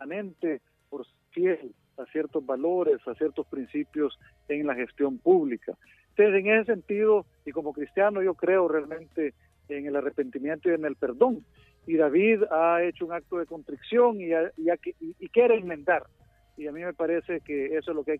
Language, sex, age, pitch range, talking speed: Spanish, male, 50-69, 145-180 Hz, 180 wpm